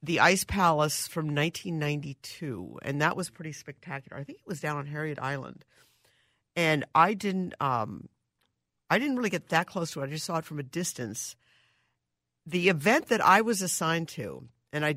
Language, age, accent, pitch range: English, 50-69, American, 140-175 Hz